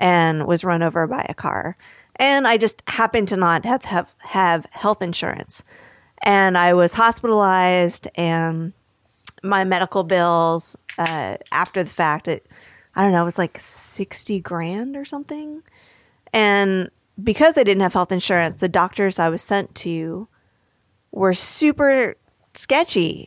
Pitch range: 165-210 Hz